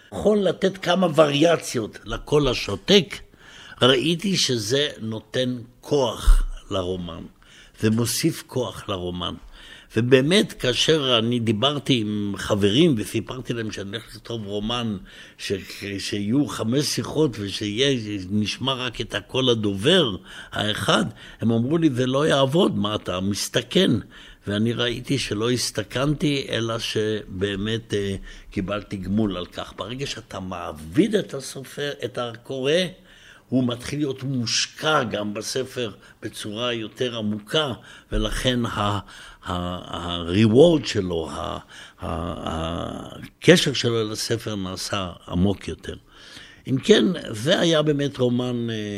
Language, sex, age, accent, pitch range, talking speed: Hebrew, male, 60-79, Swiss, 100-135 Hz, 110 wpm